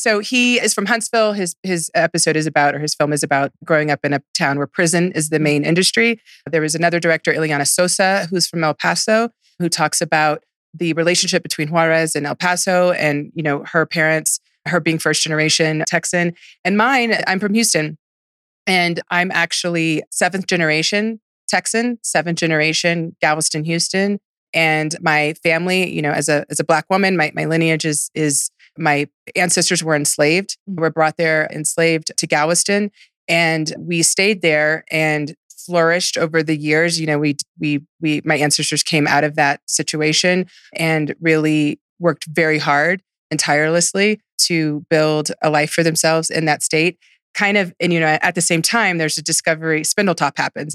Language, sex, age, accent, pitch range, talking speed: English, female, 30-49, American, 155-180 Hz, 175 wpm